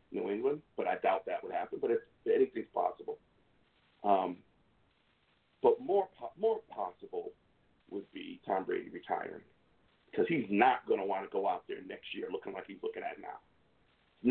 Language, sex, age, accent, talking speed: English, male, 50-69, American, 175 wpm